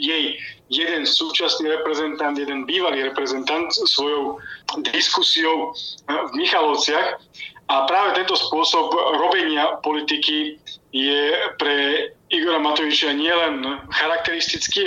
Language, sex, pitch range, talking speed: Slovak, male, 145-175 Hz, 95 wpm